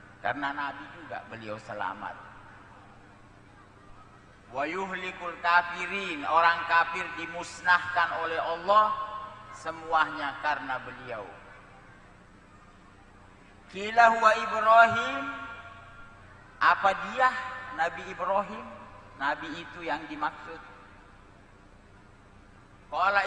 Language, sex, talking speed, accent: Indonesian, male, 70 wpm, native